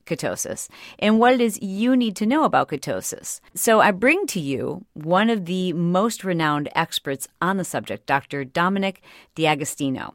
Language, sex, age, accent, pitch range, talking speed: English, female, 40-59, American, 155-210 Hz, 165 wpm